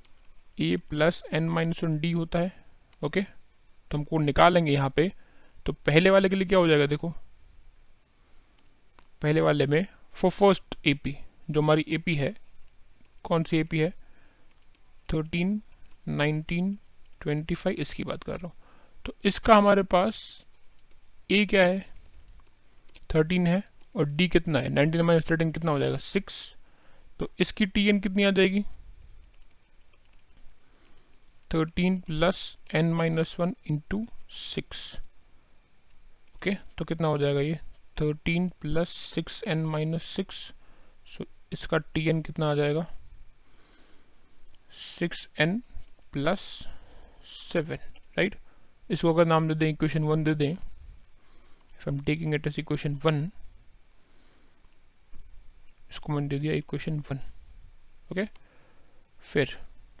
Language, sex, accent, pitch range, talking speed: Hindi, male, native, 140-175 Hz, 125 wpm